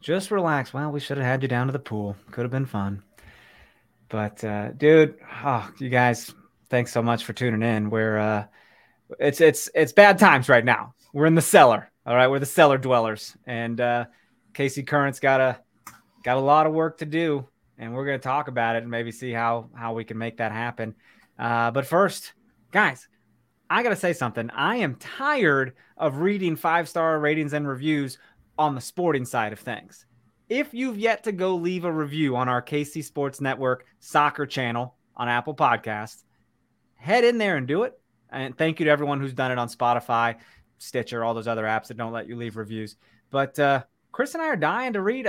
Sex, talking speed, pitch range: male, 205 wpm, 115-160 Hz